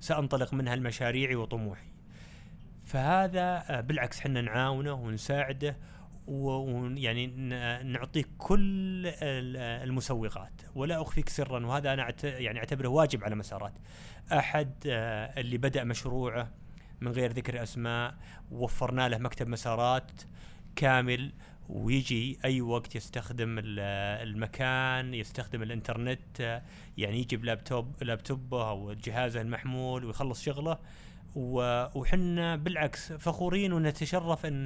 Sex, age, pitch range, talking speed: male, 30-49, 120-155 Hz, 100 wpm